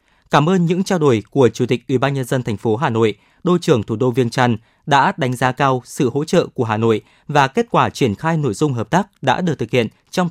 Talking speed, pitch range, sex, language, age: 270 wpm, 120-170 Hz, male, Vietnamese, 20-39